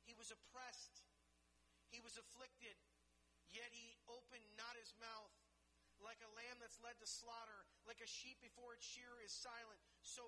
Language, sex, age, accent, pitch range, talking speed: English, male, 40-59, American, 210-250 Hz, 165 wpm